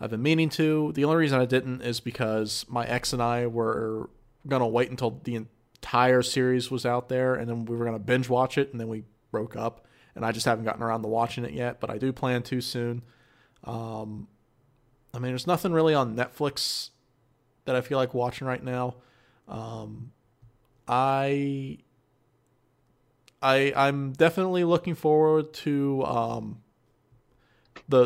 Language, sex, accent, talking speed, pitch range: English, male, American, 175 wpm, 120-140 Hz